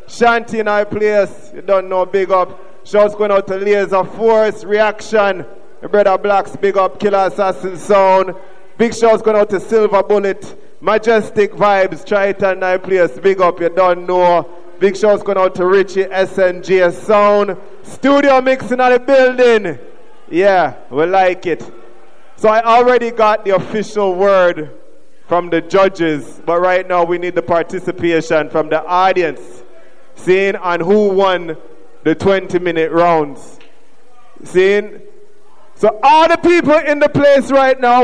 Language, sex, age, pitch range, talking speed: English, male, 20-39, 185-235 Hz, 150 wpm